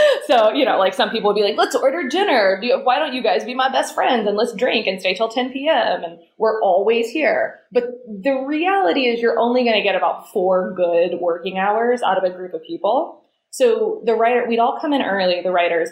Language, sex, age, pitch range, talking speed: English, female, 20-39, 180-235 Hz, 240 wpm